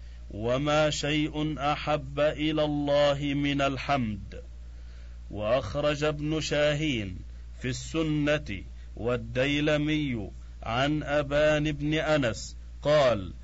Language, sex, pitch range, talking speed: Arabic, male, 120-150 Hz, 80 wpm